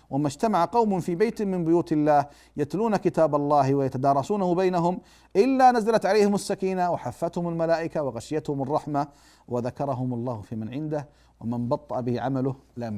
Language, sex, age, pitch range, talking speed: Arabic, male, 50-69, 130-190 Hz, 145 wpm